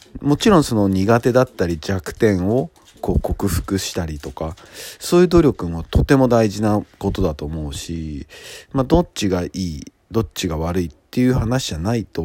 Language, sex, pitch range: Japanese, male, 85-110 Hz